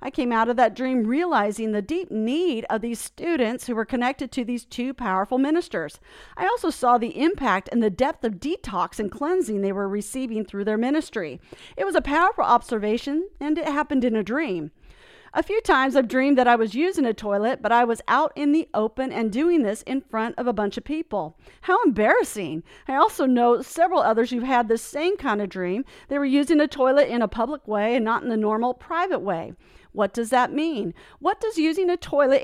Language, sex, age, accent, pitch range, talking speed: English, female, 40-59, American, 230-305 Hz, 215 wpm